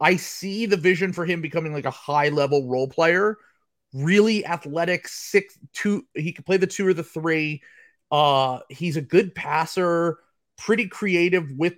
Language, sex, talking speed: English, male, 170 wpm